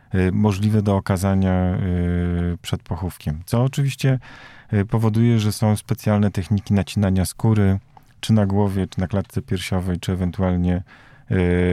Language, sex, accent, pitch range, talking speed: Polish, male, native, 95-115 Hz, 120 wpm